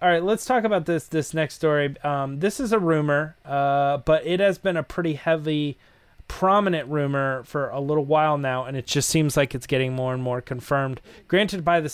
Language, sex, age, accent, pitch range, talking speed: English, male, 20-39, American, 125-155 Hz, 215 wpm